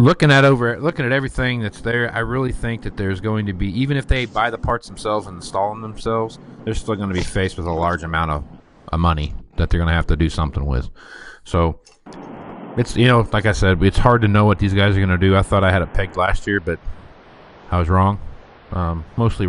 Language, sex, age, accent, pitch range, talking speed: English, male, 30-49, American, 85-105 Hz, 250 wpm